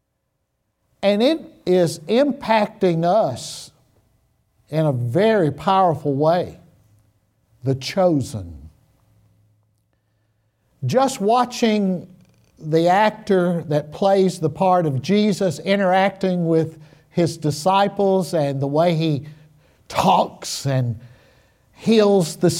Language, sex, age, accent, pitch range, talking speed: English, male, 60-79, American, 135-200 Hz, 90 wpm